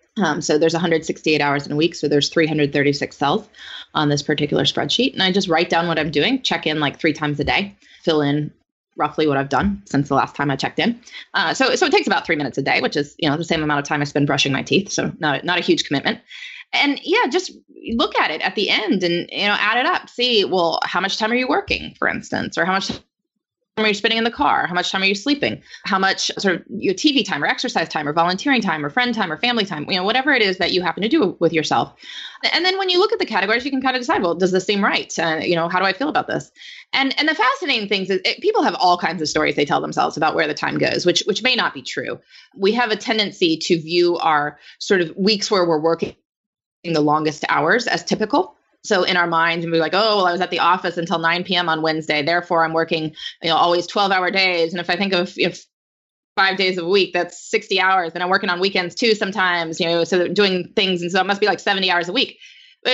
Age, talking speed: 20-39, 270 wpm